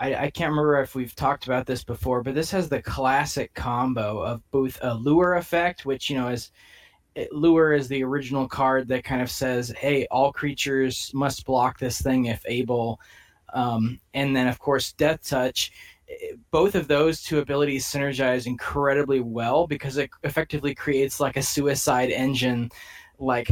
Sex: male